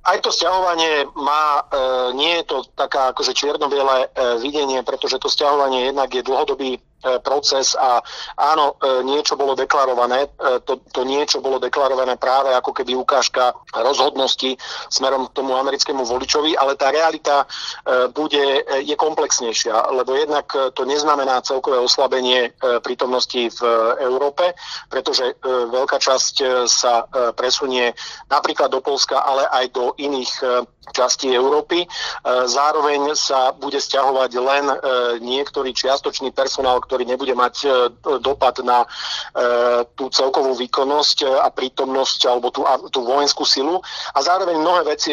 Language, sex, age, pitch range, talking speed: Slovak, male, 40-59, 125-140 Hz, 120 wpm